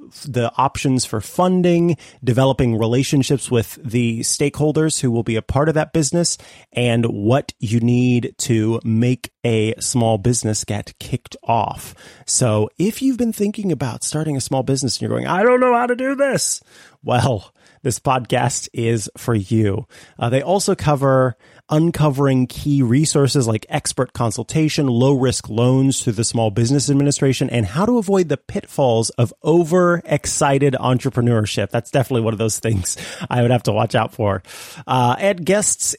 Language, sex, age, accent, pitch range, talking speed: English, male, 30-49, American, 115-165 Hz, 160 wpm